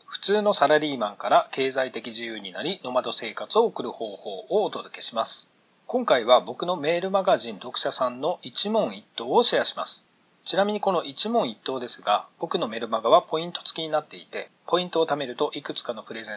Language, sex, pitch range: Japanese, male, 130-195 Hz